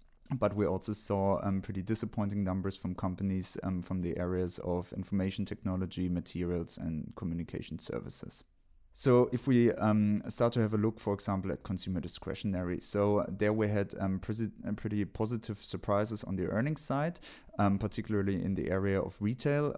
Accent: German